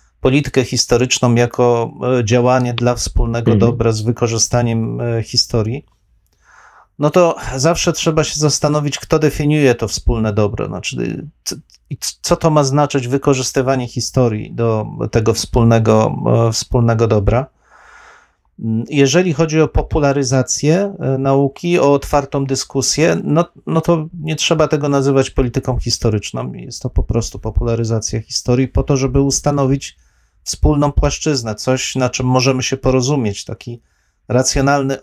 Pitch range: 115-140 Hz